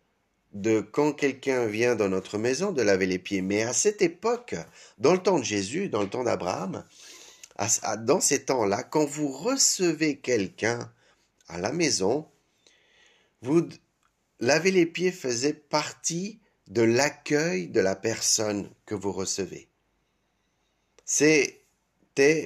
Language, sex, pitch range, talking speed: French, male, 105-170 Hz, 130 wpm